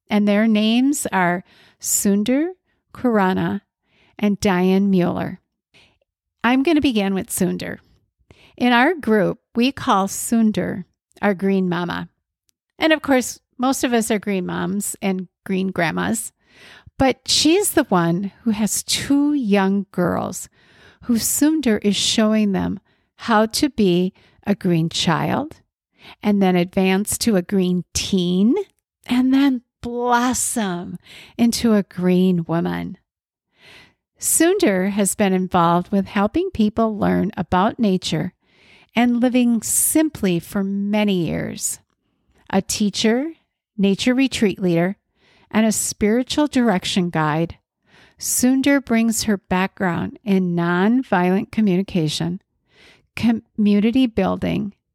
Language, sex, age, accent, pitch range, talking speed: English, female, 50-69, American, 185-240 Hz, 115 wpm